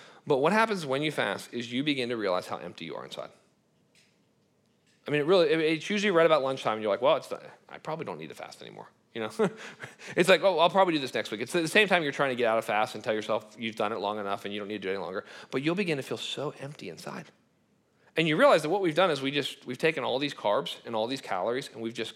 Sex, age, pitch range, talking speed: male, 40-59, 130-170 Hz, 295 wpm